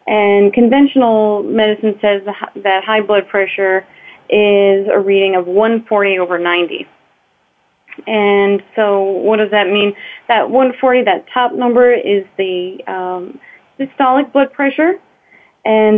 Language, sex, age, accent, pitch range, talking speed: English, female, 30-49, American, 195-235 Hz, 125 wpm